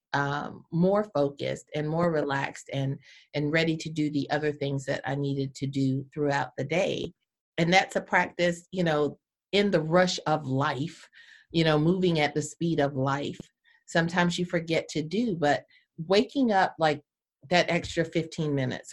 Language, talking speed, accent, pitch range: English, 170 wpm, American, 150-190 Hz